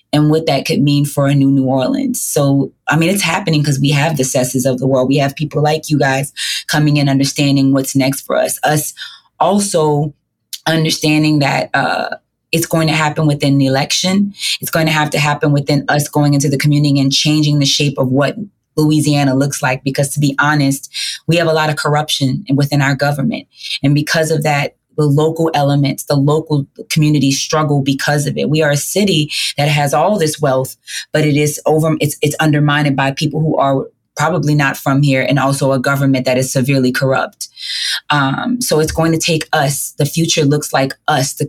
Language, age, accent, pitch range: English, 20-39, American, 135-155 Hz